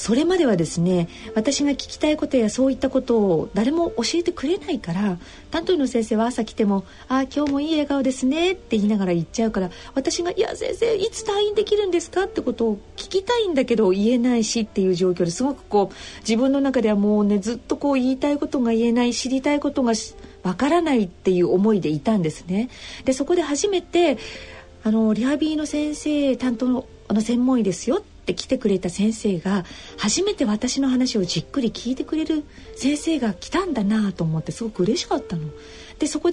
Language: Japanese